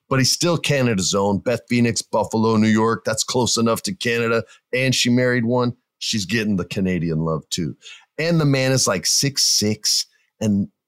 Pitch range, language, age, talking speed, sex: 100-125 Hz, English, 40-59, 175 wpm, male